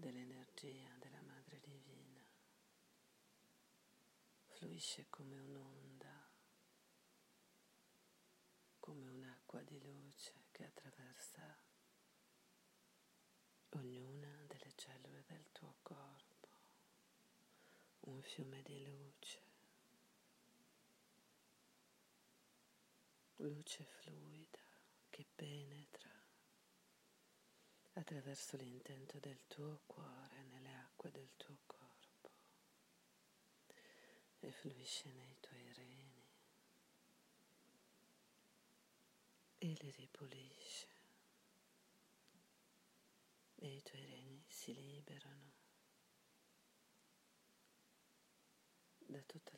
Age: 40-59